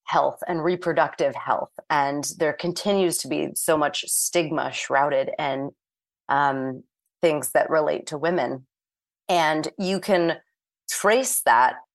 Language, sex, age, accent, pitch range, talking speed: English, female, 30-49, American, 150-185 Hz, 120 wpm